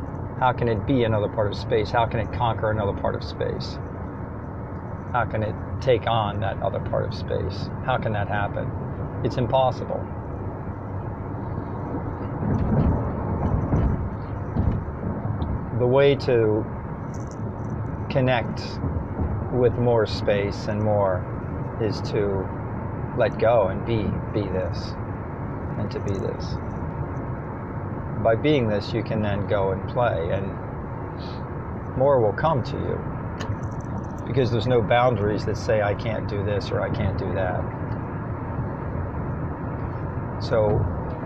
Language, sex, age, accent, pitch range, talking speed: English, male, 40-59, American, 100-120 Hz, 120 wpm